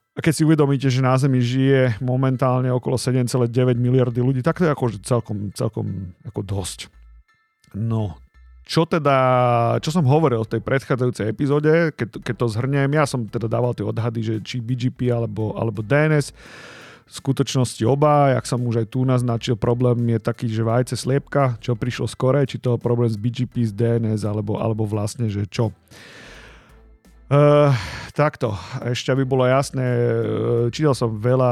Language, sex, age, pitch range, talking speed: Slovak, male, 40-59, 115-135 Hz, 170 wpm